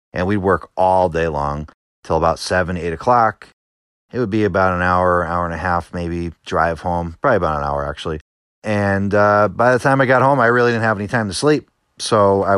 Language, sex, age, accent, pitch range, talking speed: English, male, 30-49, American, 85-120 Hz, 225 wpm